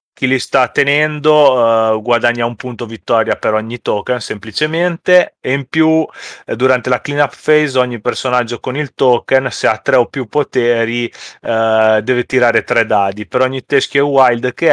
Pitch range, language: 115-135 Hz, Italian